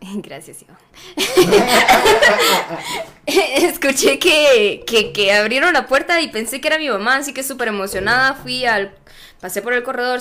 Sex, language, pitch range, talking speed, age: female, Spanish, 195-260 Hz, 145 wpm, 10-29